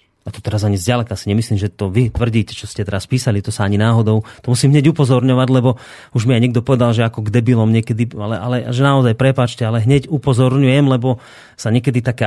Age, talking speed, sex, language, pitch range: 30-49, 225 wpm, male, Slovak, 115-135 Hz